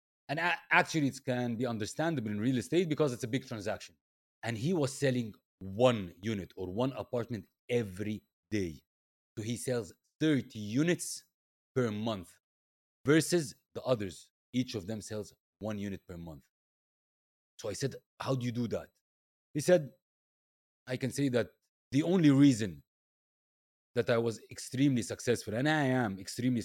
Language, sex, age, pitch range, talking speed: English, male, 30-49, 105-140 Hz, 155 wpm